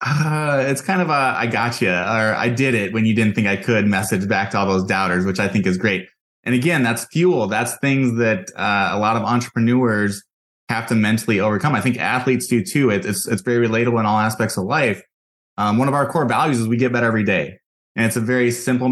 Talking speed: 240 wpm